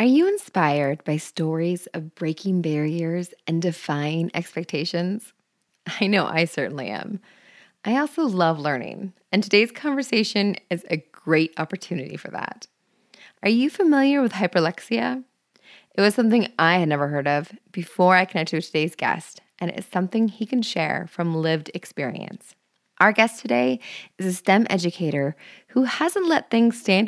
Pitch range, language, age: 165-230 Hz, English, 20-39